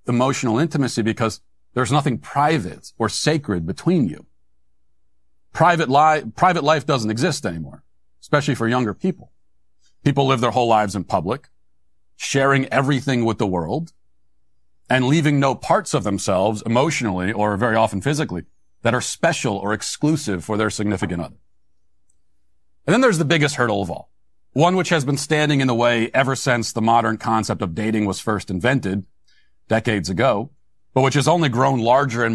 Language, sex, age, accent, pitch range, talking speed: English, male, 40-59, American, 100-145 Hz, 160 wpm